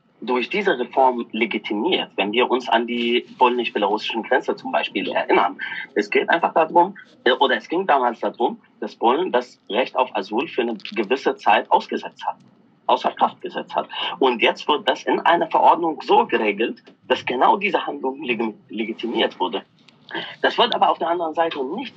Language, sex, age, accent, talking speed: German, male, 30-49, German, 170 wpm